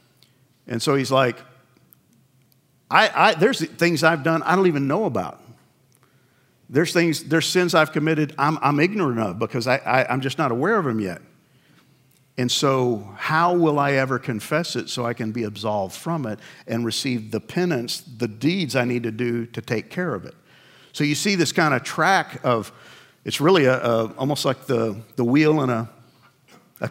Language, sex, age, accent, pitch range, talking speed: English, male, 50-69, American, 125-155 Hz, 190 wpm